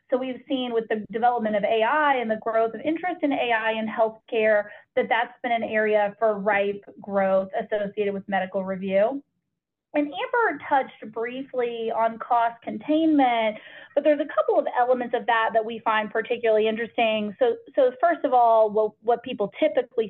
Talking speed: 175 wpm